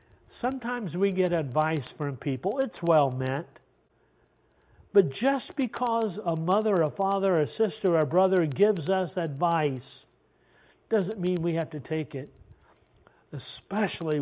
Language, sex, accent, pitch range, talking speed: English, male, American, 135-185 Hz, 130 wpm